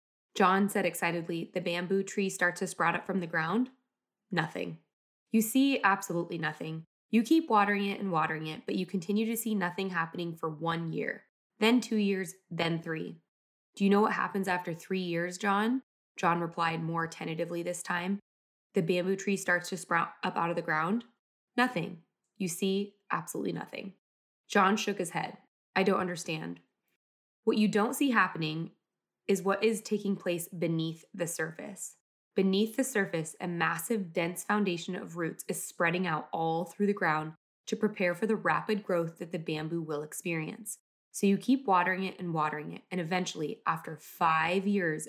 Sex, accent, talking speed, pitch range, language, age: female, American, 175 wpm, 165-200 Hz, English, 20-39